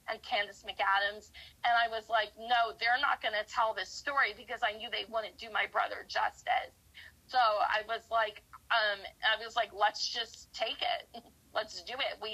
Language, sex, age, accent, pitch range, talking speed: English, female, 30-49, American, 215-260 Hz, 190 wpm